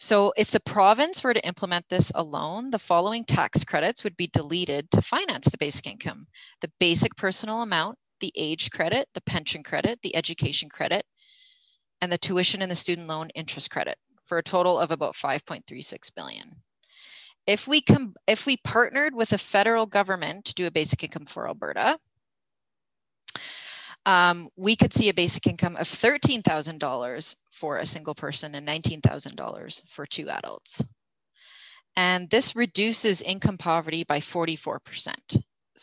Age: 30-49